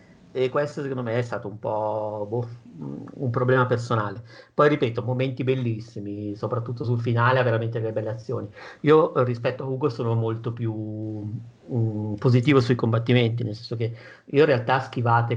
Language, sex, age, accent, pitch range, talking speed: Italian, male, 50-69, native, 110-125 Hz, 165 wpm